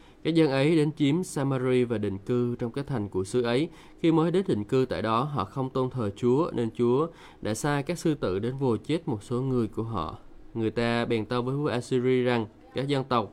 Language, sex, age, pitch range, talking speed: Vietnamese, male, 20-39, 110-135 Hz, 240 wpm